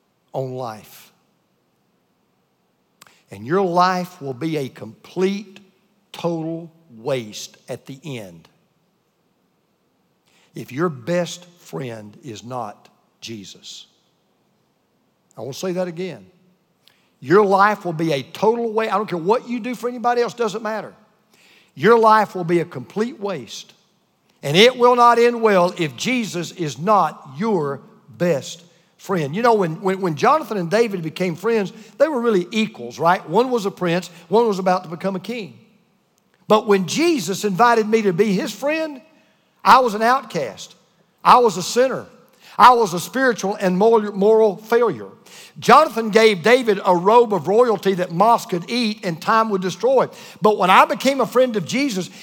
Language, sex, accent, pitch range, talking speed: English, male, American, 175-225 Hz, 160 wpm